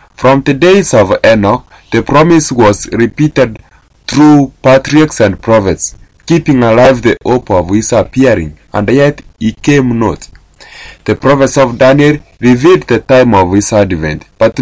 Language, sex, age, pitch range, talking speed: English, male, 20-39, 100-135 Hz, 150 wpm